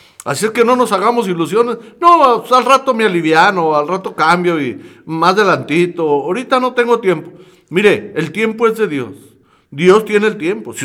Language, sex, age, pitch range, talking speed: Spanish, male, 60-79, 180-255 Hz, 190 wpm